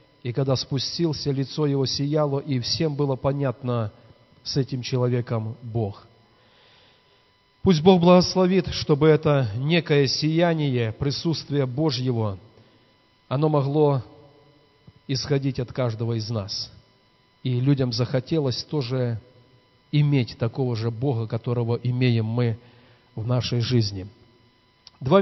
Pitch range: 125-160 Hz